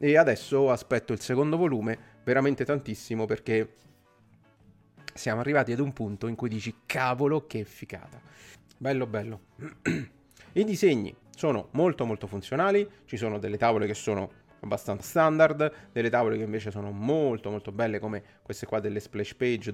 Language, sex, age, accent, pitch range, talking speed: Italian, male, 30-49, native, 105-130 Hz, 150 wpm